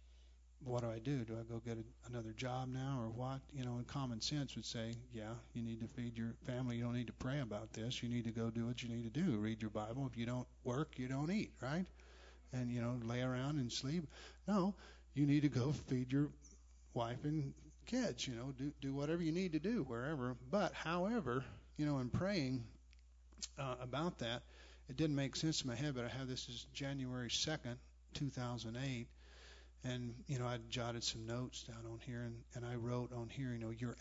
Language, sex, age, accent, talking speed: English, male, 50-69, American, 220 wpm